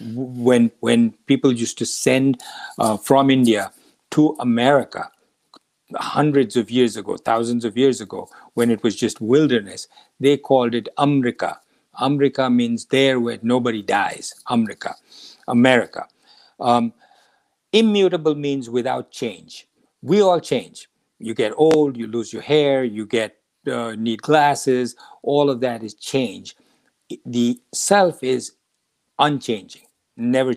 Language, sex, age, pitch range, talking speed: English, male, 50-69, 120-150 Hz, 130 wpm